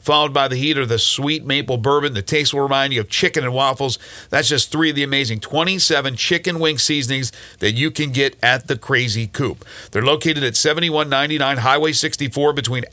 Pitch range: 130-160 Hz